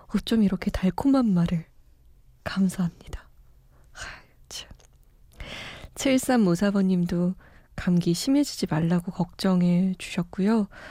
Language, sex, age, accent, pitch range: Korean, female, 20-39, native, 175-230 Hz